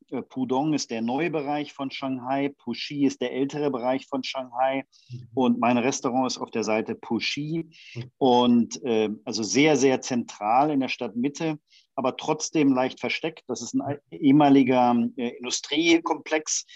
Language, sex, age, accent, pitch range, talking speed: German, male, 50-69, German, 115-140 Hz, 145 wpm